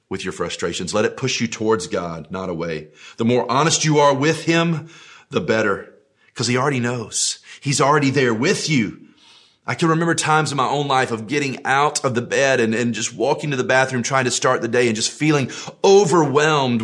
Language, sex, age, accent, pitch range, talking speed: English, male, 30-49, American, 105-130 Hz, 210 wpm